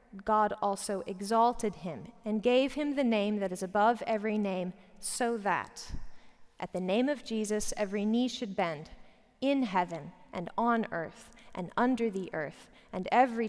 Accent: American